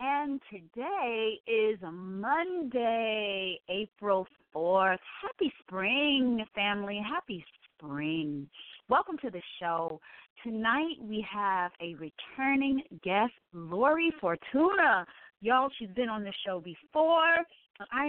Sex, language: female, English